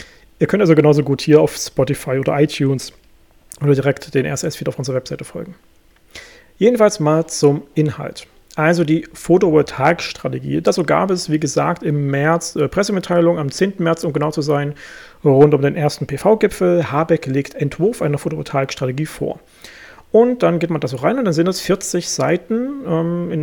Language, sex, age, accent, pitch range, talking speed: German, male, 40-59, German, 150-185 Hz, 175 wpm